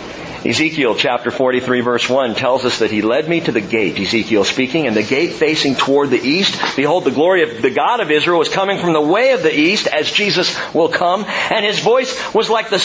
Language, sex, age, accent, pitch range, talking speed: English, male, 50-69, American, 120-195 Hz, 230 wpm